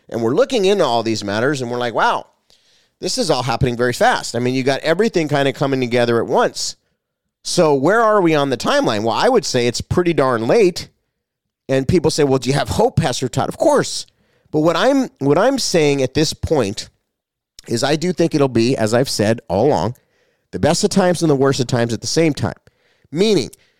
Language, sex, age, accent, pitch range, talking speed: English, male, 30-49, American, 125-165 Hz, 225 wpm